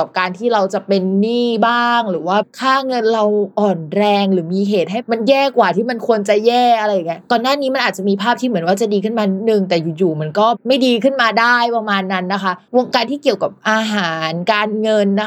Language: Thai